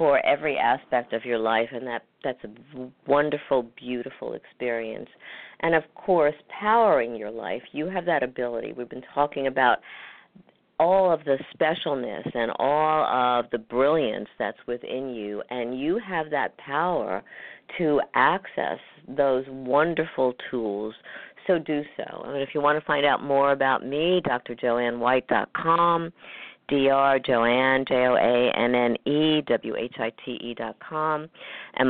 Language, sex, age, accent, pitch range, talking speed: English, female, 50-69, American, 125-150 Hz, 150 wpm